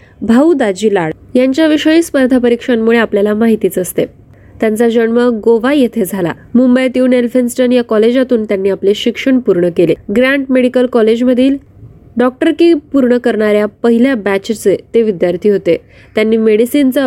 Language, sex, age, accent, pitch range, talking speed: Marathi, female, 20-39, native, 210-260 Hz, 130 wpm